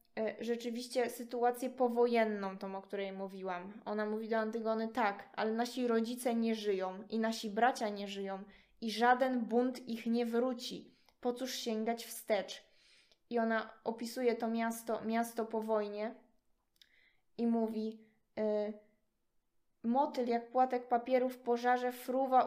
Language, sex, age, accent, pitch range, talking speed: Polish, female, 20-39, native, 225-250 Hz, 130 wpm